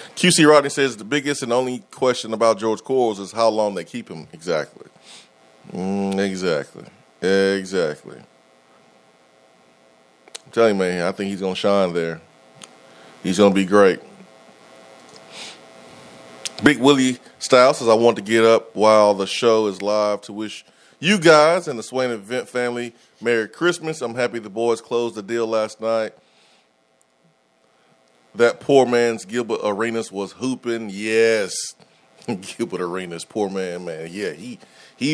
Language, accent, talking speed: English, American, 150 wpm